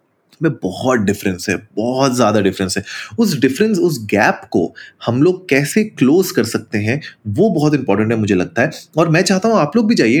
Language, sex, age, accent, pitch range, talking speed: Hindi, male, 30-49, native, 110-160 Hz, 205 wpm